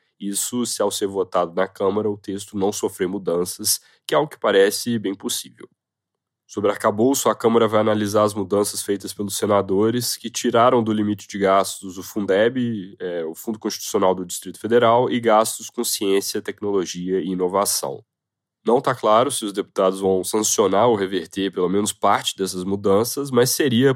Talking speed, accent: 170 wpm, Brazilian